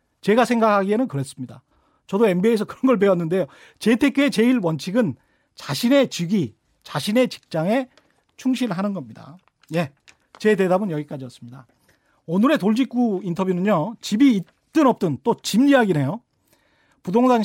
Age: 40-59